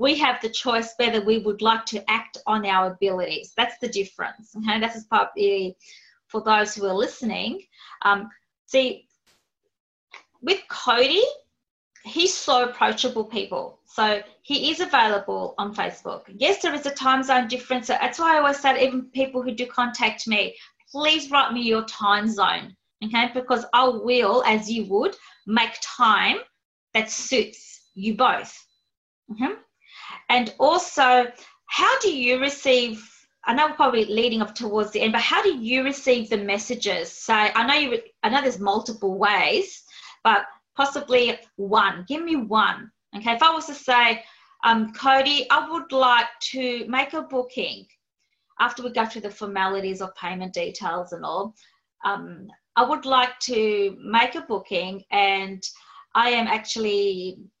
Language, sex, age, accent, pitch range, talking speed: English, female, 20-39, Australian, 215-270 Hz, 160 wpm